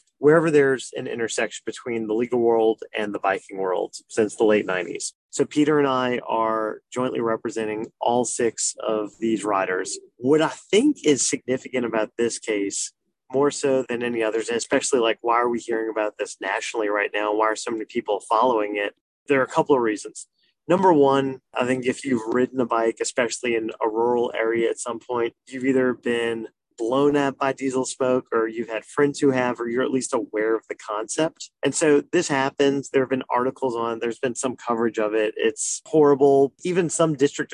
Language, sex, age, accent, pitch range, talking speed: English, male, 30-49, American, 115-140 Hz, 200 wpm